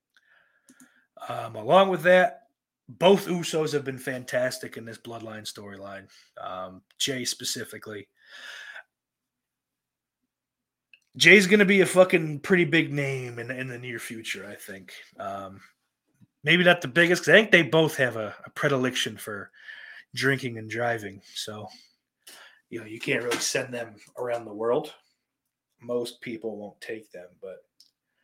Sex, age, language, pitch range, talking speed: male, 20-39, English, 120-190 Hz, 140 wpm